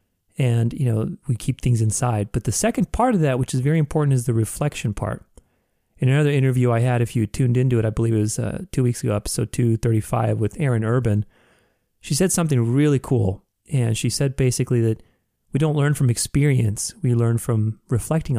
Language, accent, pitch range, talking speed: English, American, 110-135 Hz, 205 wpm